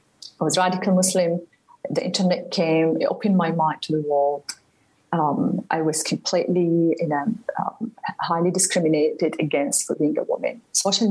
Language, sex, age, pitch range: English, female, 40-59, 160-255 Hz